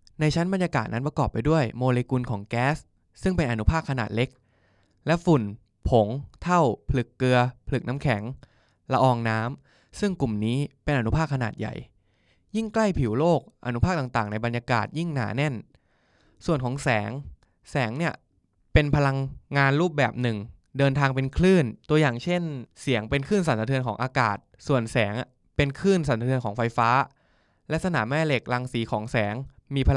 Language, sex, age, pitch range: Thai, male, 20-39, 115-155 Hz